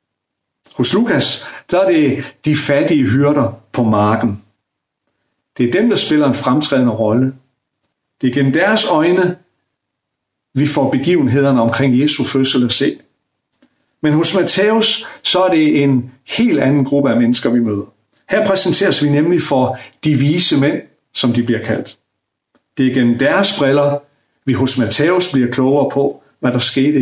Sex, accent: male, native